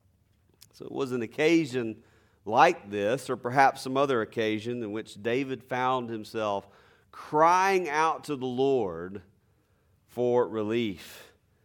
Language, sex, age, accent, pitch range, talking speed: English, male, 40-59, American, 105-155 Hz, 125 wpm